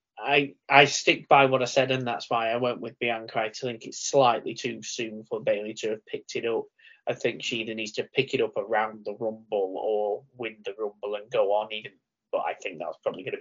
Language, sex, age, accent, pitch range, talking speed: English, male, 20-39, British, 115-165 Hz, 235 wpm